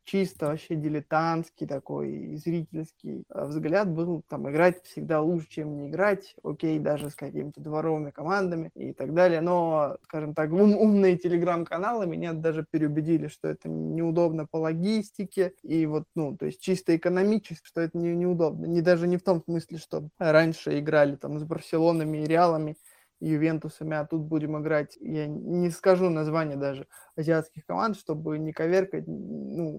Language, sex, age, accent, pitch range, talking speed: Russian, male, 20-39, native, 155-180 Hz, 155 wpm